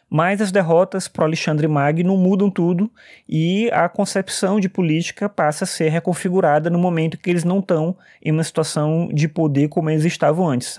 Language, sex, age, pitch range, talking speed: Portuguese, male, 20-39, 150-185 Hz, 180 wpm